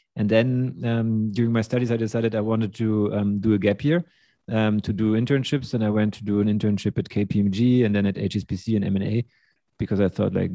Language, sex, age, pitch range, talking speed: English, male, 30-49, 105-115 Hz, 220 wpm